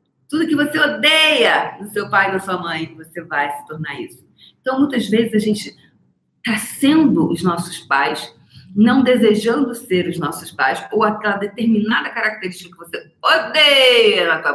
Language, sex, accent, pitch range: Portuguese, female, Brazilian, 160-220 Hz